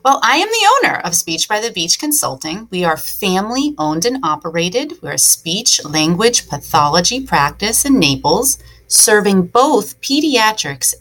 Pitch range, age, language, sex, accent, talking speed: 155-215 Hz, 30-49, English, female, American, 155 wpm